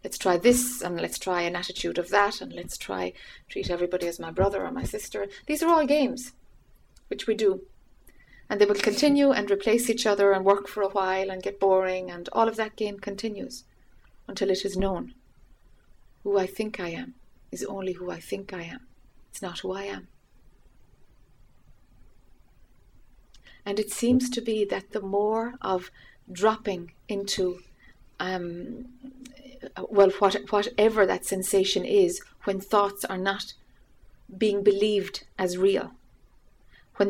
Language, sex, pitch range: English, female, 190-245 Hz